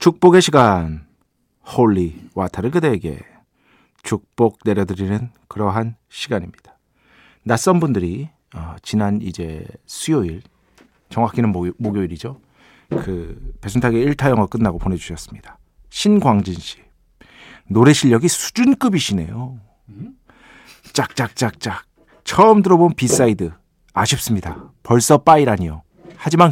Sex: male